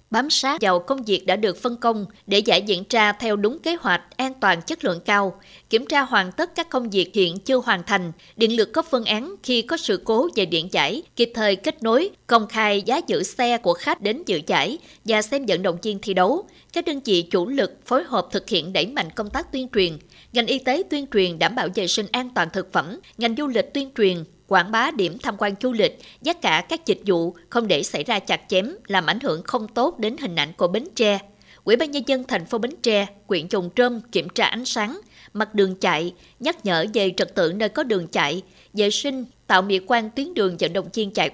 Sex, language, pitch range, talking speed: female, Vietnamese, 190-250 Hz, 240 wpm